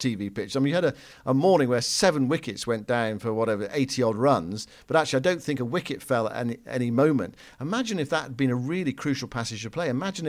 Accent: British